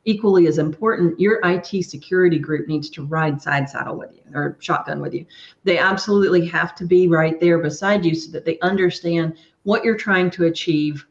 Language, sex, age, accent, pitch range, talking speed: English, female, 40-59, American, 160-200 Hz, 195 wpm